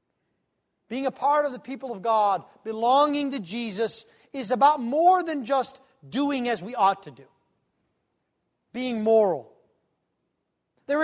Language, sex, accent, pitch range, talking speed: English, male, American, 225-290 Hz, 135 wpm